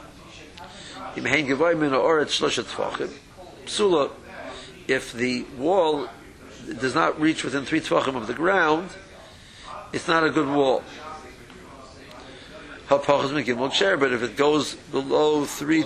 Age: 60-79